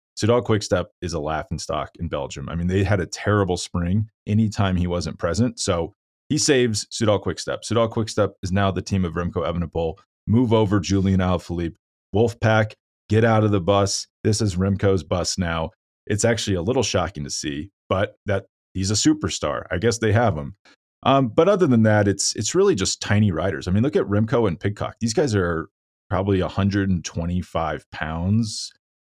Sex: male